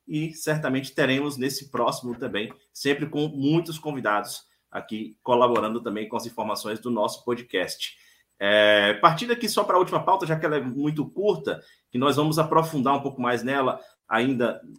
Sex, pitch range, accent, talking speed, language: male, 120-165 Hz, Brazilian, 165 wpm, Portuguese